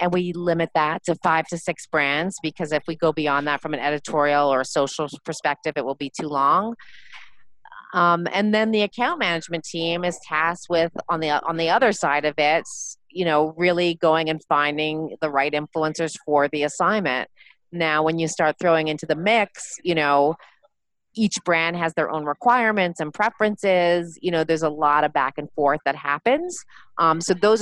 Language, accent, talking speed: English, American, 195 wpm